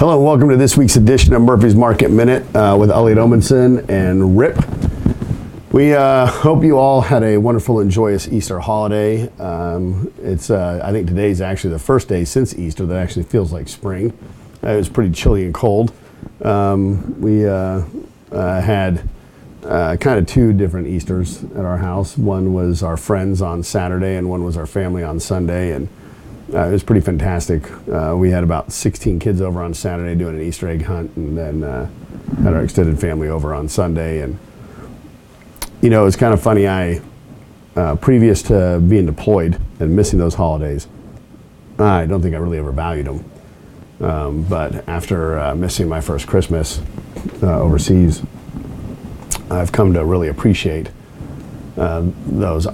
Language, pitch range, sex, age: English, 85-105 Hz, male, 40-59